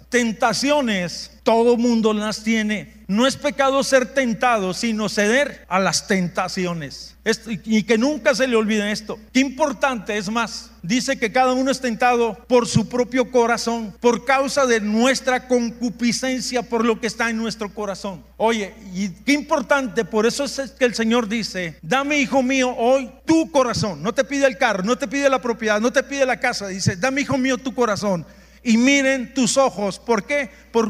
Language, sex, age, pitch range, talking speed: Spanish, male, 50-69, 220-265 Hz, 185 wpm